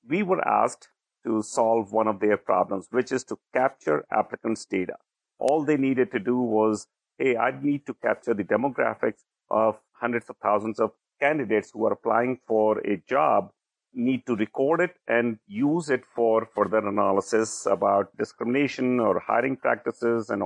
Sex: male